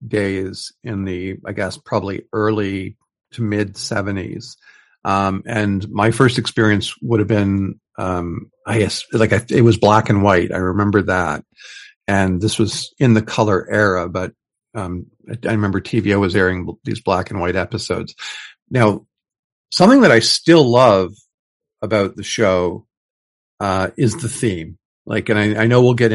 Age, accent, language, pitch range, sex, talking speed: 50-69, American, English, 95-115 Hz, male, 160 wpm